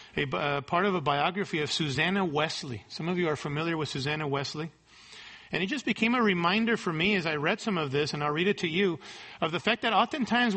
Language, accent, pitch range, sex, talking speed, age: English, American, 165-220 Hz, male, 240 wpm, 40-59